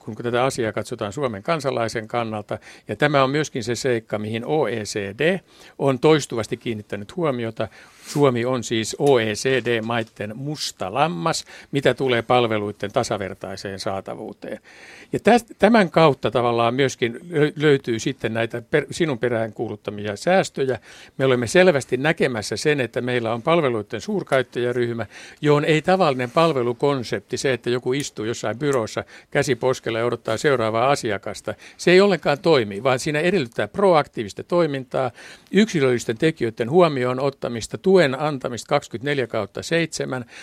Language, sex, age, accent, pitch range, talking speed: Finnish, male, 60-79, native, 115-155 Hz, 125 wpm